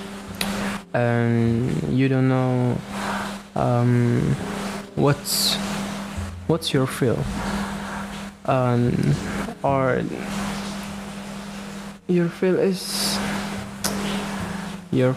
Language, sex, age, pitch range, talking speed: English, male, 20-39, 130-195 Hz, 60 wpm